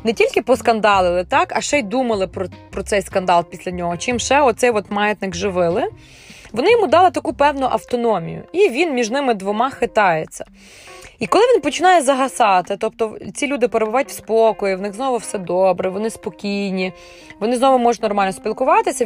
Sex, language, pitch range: female, Ukrainian, 195-260 Hz